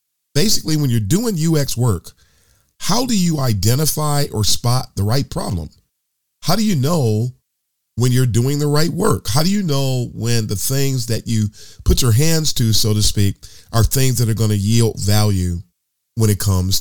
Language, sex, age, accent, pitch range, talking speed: English, male, 40-59, American, 105-135 Hz, 180 wpm